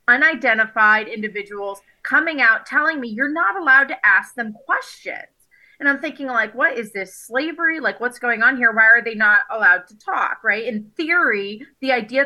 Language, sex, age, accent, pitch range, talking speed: English, female, 30-49, American, 210-265 Hz, 185 wpm